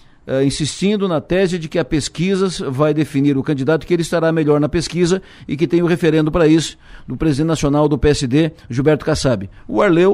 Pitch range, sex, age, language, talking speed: 135-165 Hz, male, 60-79, Portuguese, 205 wpm